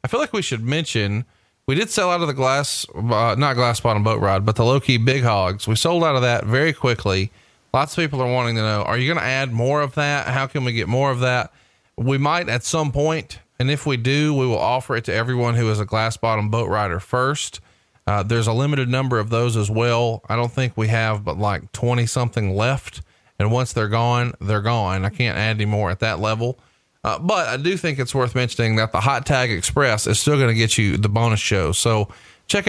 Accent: American